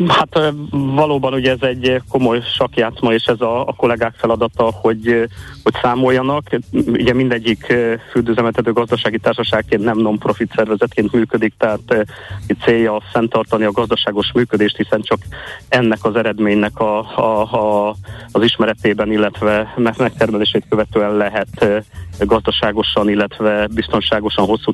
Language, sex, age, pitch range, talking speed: Hungarian, male, 30-49, 105-120 Hz, 120 wpm